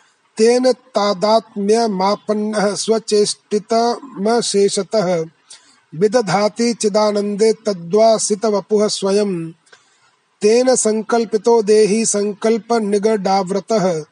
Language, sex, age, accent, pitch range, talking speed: Hindi, male, 30-49, native, 200-230 Hz, 45 wpm